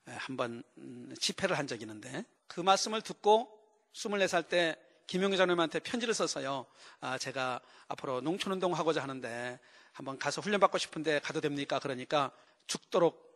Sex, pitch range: male, 135-190 Hz